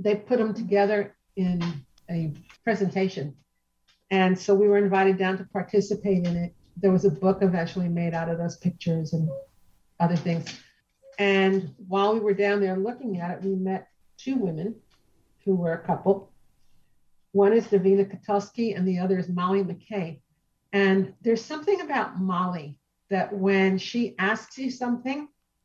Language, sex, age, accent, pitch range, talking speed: English, female, 50-69, American, 175-210 Hz, 160 wpm